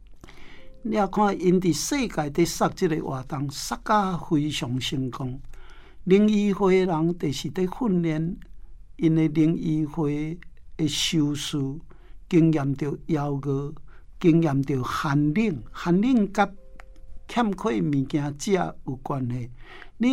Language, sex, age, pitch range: Chinese, male, 60-79, 140-175 Hz